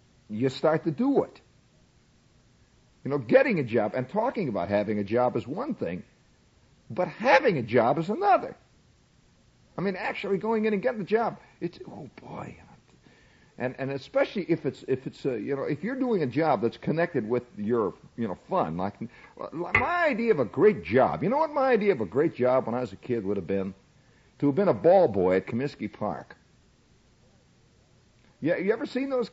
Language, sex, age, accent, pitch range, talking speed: English, male, 50-69, American, 130-210 Hz, 195 wpm